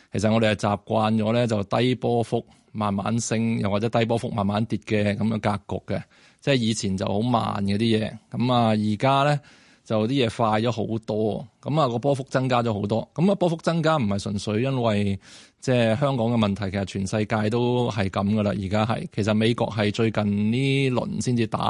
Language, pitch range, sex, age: Chinese, 105-125 Hz, male, 20-39